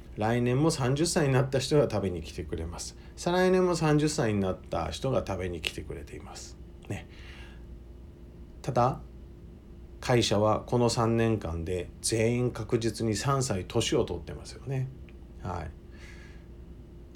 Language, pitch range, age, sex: Japanese, 85-120 Hz, 50-69, male